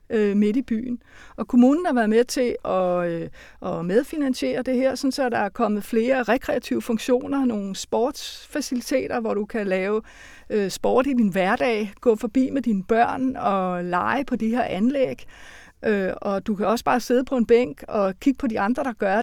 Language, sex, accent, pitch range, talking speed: Danish, female, native, 210-255 Hz, 180 wpm